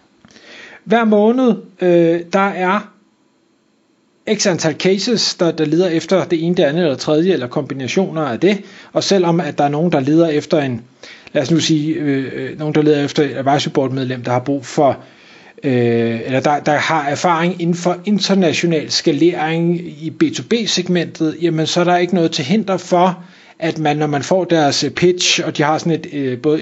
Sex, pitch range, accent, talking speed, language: male, 155-190 Hz, native, 175 wpm, Danish